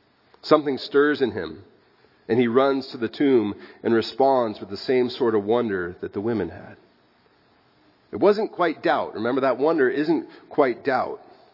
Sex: male